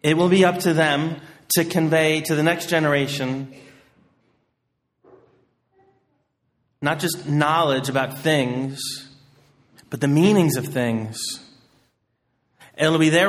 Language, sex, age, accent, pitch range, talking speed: English, male, 30-49, American, 135-165 Hz, 115 wpm